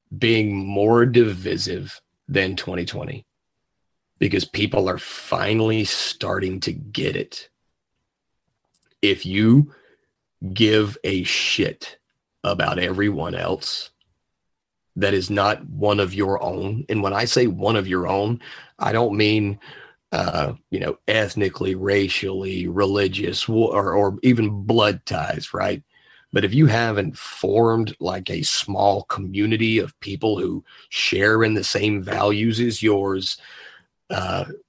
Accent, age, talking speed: American, 30-49, 125 wpm